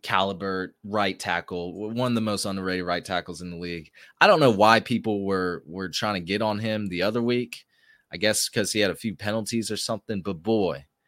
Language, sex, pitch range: English, male, 90-110 Hz